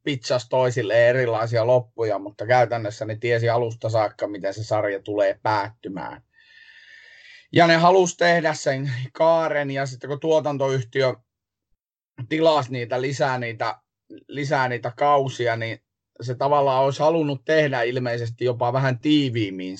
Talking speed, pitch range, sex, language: 125 wpm, 120-155 Hz, male, Finnish